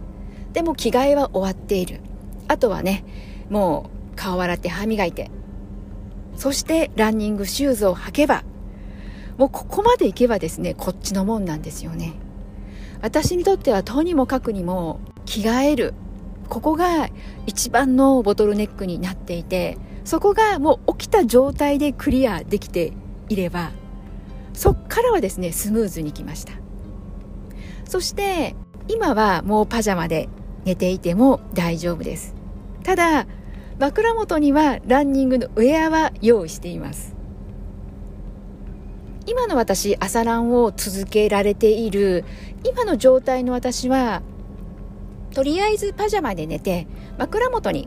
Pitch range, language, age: 175-280 Hz, Japanese, 40-59